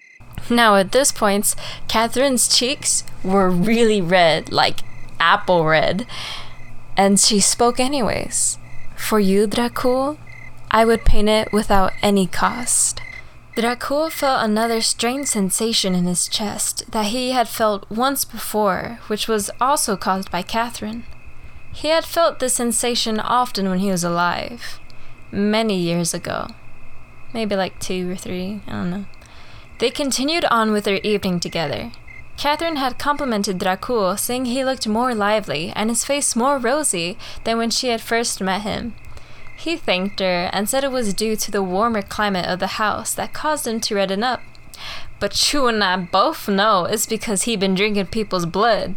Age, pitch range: 10-29, 190-240 Hz